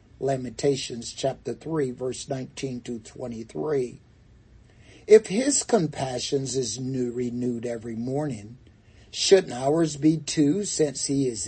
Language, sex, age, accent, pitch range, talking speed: English, male, 60-79, American, 120-160 Hz, 115 wpm